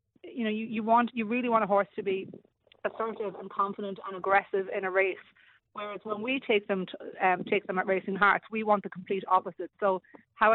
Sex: female